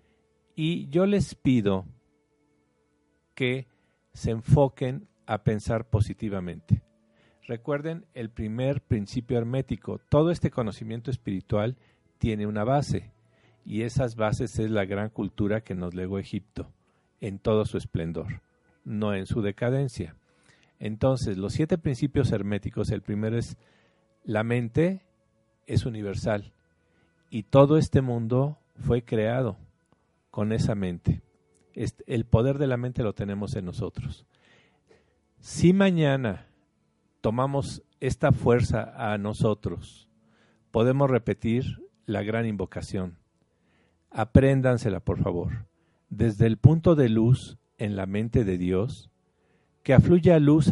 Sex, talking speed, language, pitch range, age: male, 120 wpm, Spanish, 100-130 Hz, 50-69